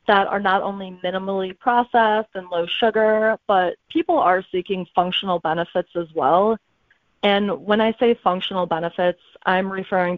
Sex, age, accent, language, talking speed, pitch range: female, 20-39, American, English, 145 wpm, 175-210 Hz